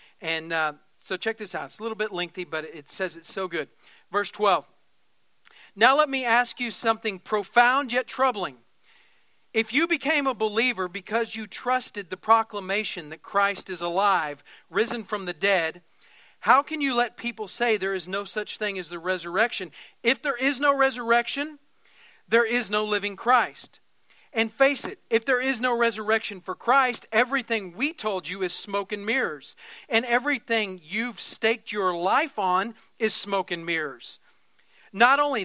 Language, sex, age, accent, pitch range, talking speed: English, male, 40-59, American, 185-240 Hz, 170 wpm